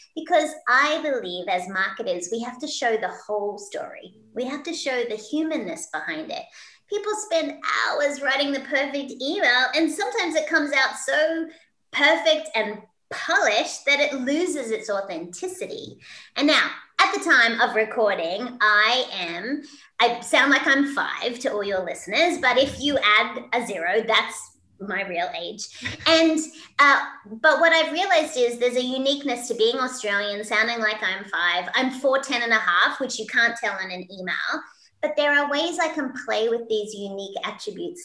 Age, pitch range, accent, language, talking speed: 30-49, 215-310 Hz, Australian, English, 175 wpm